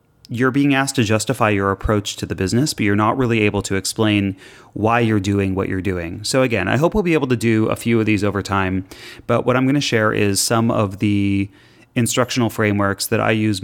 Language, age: English, 30-49